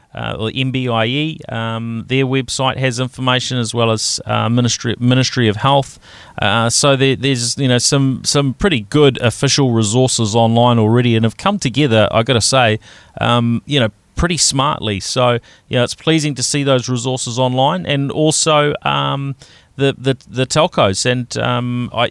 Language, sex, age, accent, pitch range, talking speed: English, male, 30-49, Australian, 115-130 Hz, 170 wpm